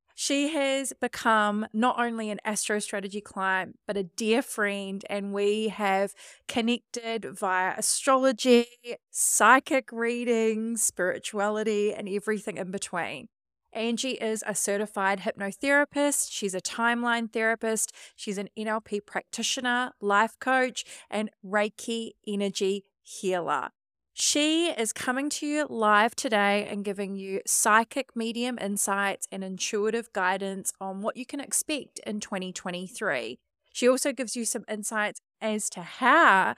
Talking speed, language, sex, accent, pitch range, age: 125 wpm, English, female, Australian, 195-240 Hz, 20-39